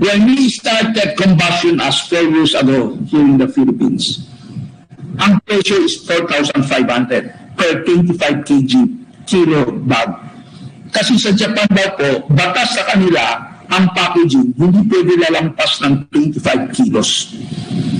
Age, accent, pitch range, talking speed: 50-69, native, 155-205 Hz, 125 wpm